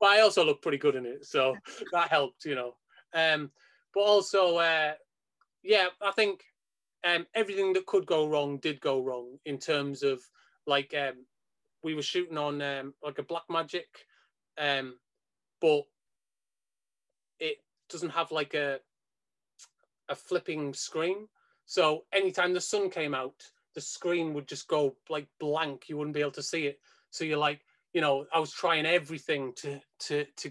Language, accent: English, British